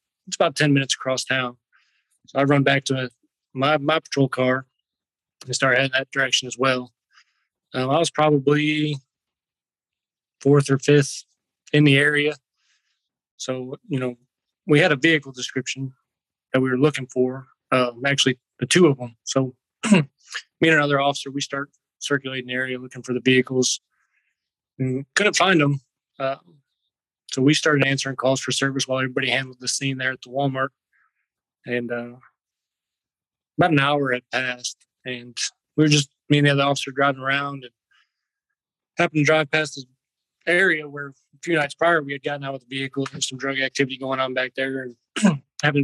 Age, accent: 20-39, American